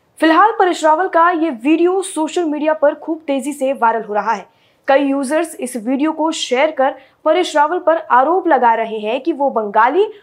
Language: Hindi